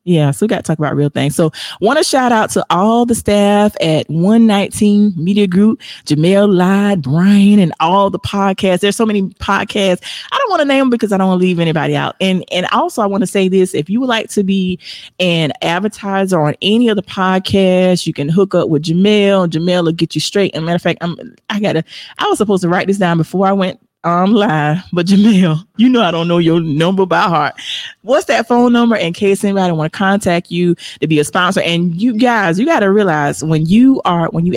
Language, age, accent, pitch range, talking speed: English, 30-49, American, 165-210 Hz, 235 wpm